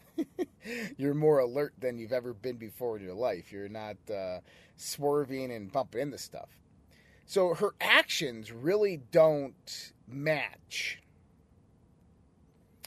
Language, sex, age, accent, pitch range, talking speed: English, male, 30-49, American, 125-170 Hz, 115 wpm